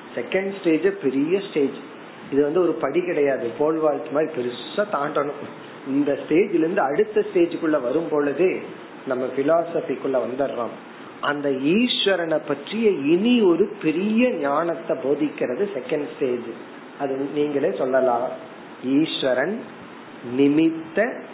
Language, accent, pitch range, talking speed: Tamil, native, 145-195 Hz, 35 wpm